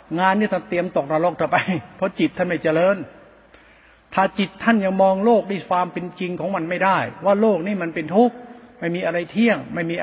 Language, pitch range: Thai, 160-205 Hz